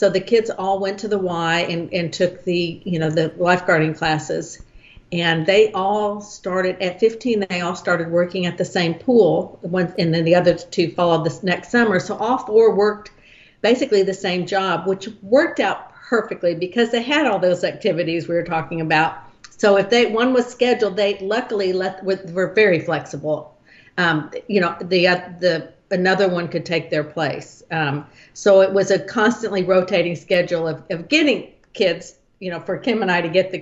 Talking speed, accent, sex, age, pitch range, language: 195 wpm, American, female, 50-69, 165-200 Hz, English